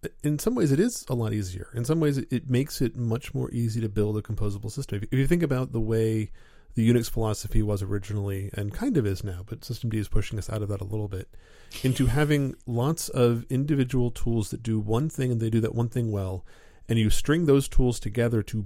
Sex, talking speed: male, 240 wpm